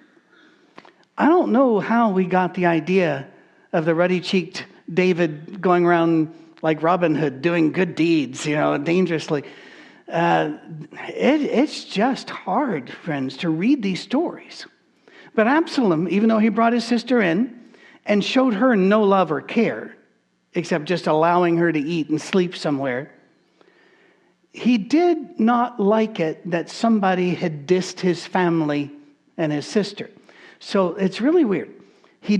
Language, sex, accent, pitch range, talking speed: English, male, American, 160-220 Hz, 140 wpm